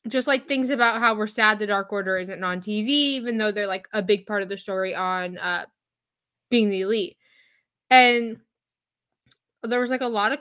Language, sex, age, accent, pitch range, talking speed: English, female, 10-29, American, 210-265 Hz, 200 wpm